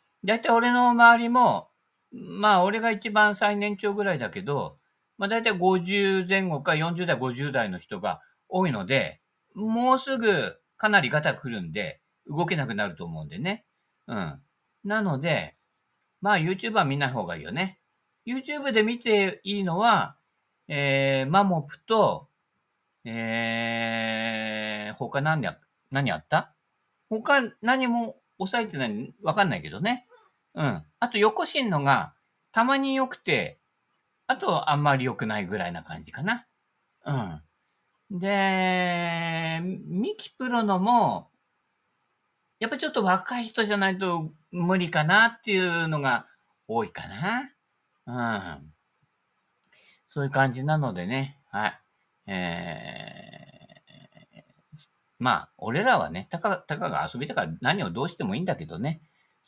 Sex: male